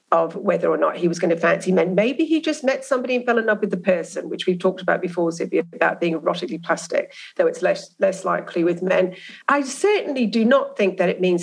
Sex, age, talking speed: female, 40-59, 245 wpm